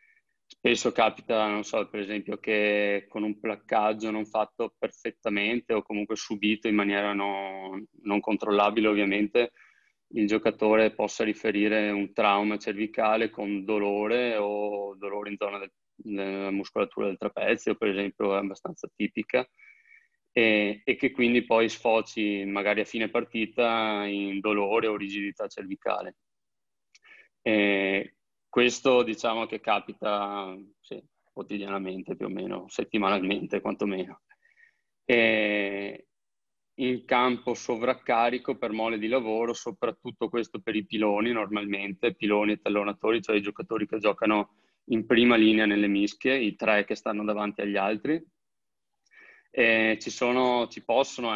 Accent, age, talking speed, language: native, 20-39, 130 wpm, Italian